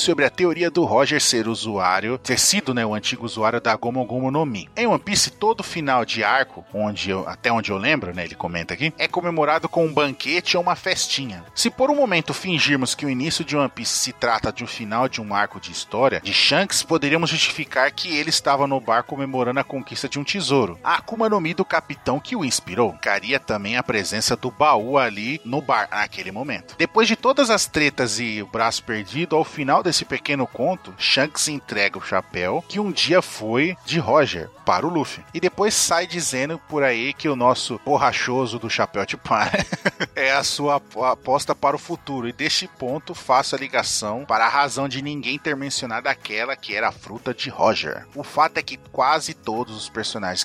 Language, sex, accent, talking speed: Portuguese, male, Brazilian, 210 wpm